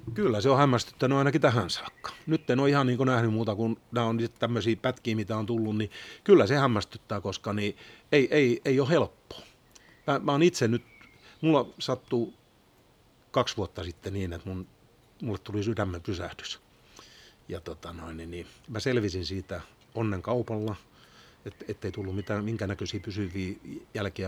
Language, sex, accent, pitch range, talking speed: Finnish, male, native, 95-120 Hz, 160 wpm